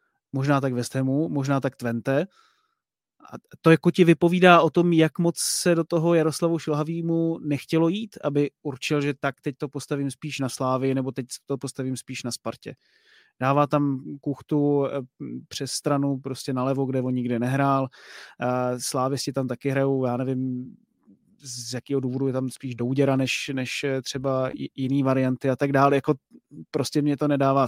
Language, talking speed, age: Czech, 165 wpm, 30-49